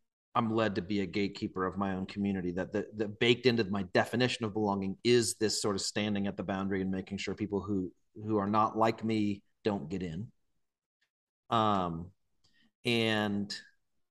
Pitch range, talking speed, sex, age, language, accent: 100-125 Hz, 180 wpm, male, 40-59, English, American